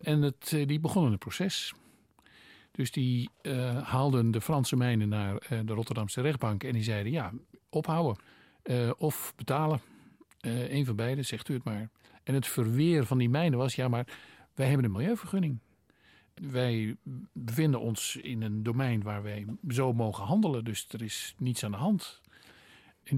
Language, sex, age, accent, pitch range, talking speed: Dutch, male, 50-69, Dutch, 110-135 Hz, 170 wpm